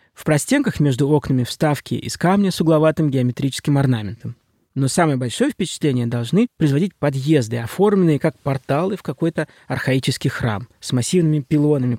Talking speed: 140 wpm